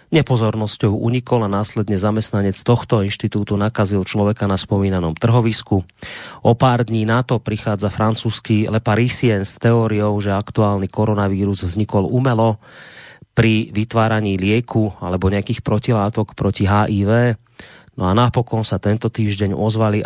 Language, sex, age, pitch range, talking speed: Slovak, male, 30-49, 100-120 Hz, 130 wpm